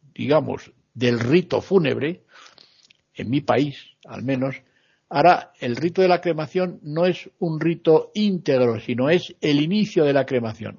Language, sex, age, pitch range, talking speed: Spanish, male, 60-79, 125-170 Hz, 150 wpm